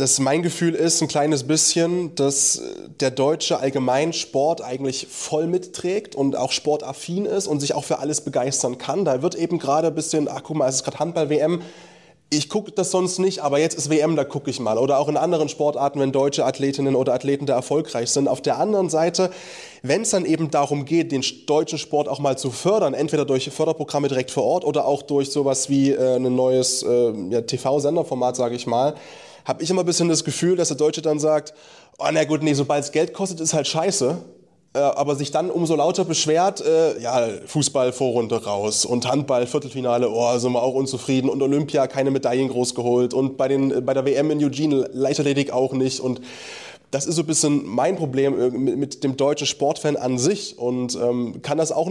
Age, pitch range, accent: 20-39, 135-160 Hz, German